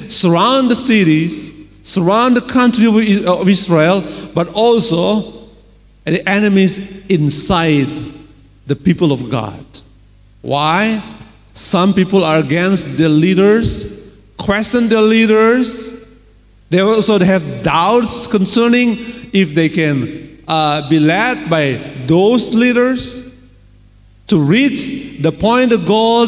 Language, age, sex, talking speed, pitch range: Indonesian, 40-59, male, 105 wpm, 120-200 Hz